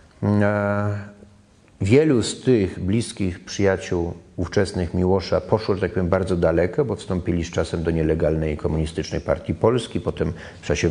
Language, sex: Polish, male